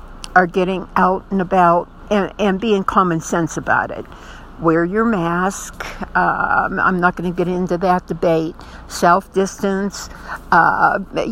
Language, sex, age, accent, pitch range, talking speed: English, female, 60-79, American, 185-225 Hz, 140 wpm